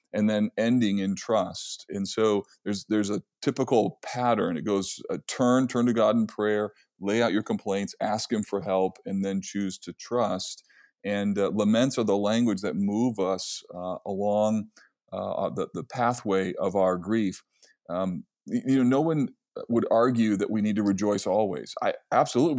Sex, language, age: male, English, 40-59